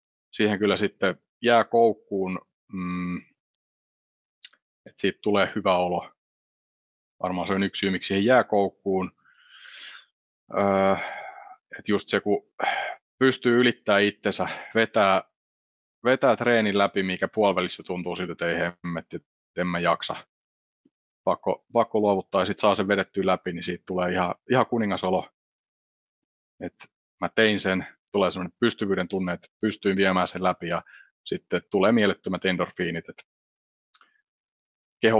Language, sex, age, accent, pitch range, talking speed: Finnish, male, 30-49, native, 90-105 Hz, 125 wpm